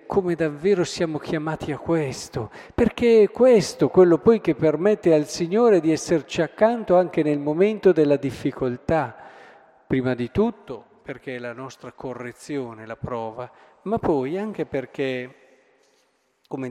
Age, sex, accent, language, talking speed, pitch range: 50-69, male, native, Italian, 135 wpm, 130-180 Hz